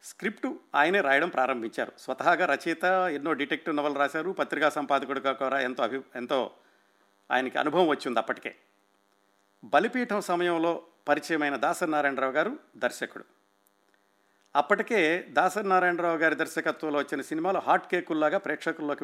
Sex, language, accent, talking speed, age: male, Telugu, native, 115 wpm, 50-69